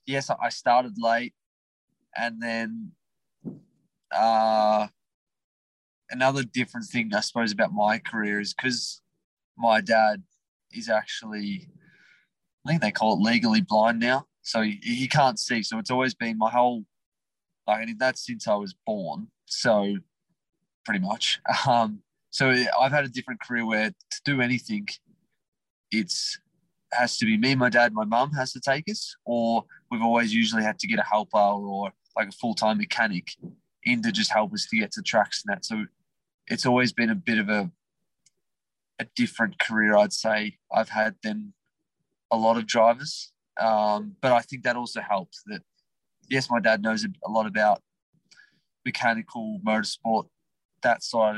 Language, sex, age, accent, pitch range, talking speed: English, male, 20-39, Australian, 110-185 Hz, 160 wpm